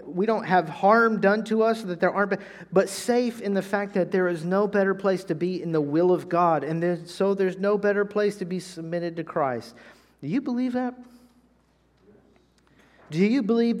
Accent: American